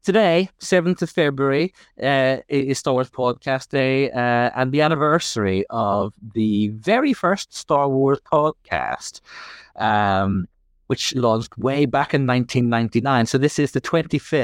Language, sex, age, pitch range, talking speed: English, male, 30-49, 110-150 Hz, 115 wpm